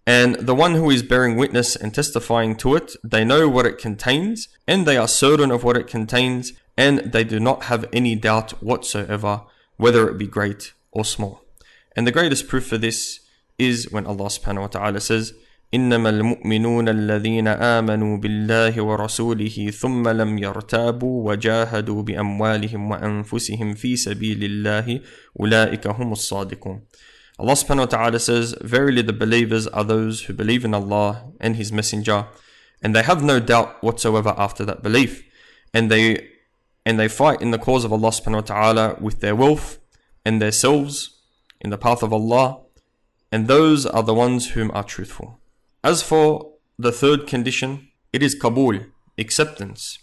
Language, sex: English, male